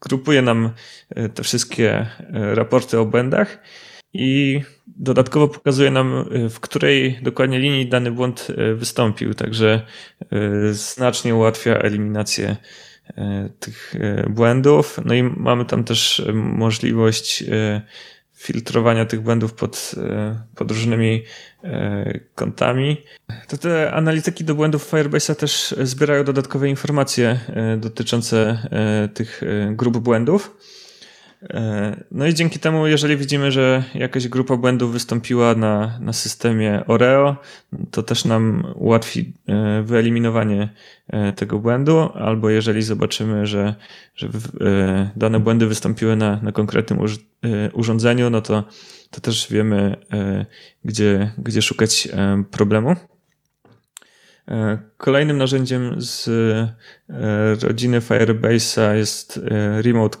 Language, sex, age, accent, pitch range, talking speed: Polish, male, 30-49, native, 110-130 Hz, 100 wpm